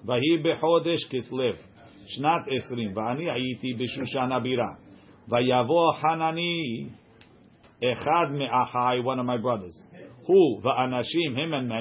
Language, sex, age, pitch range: English, male, 50-69, 125-165 Hz